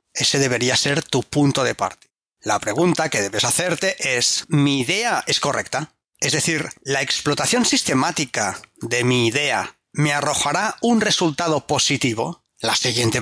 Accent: Spanish